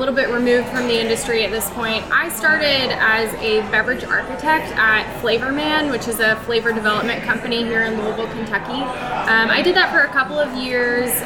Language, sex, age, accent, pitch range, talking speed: English, female, 10-29, American, 225-265 Hz, 205 wpm